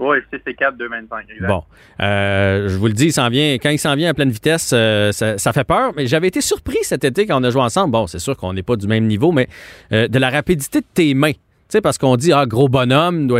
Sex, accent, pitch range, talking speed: male, Canadian, 120-160 Hz, 265 wpm